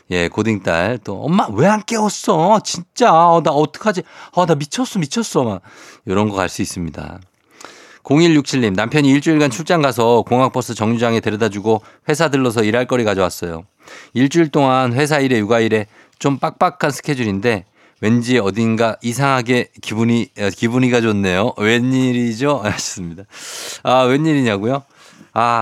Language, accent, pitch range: Korean, native, 105-150 Hz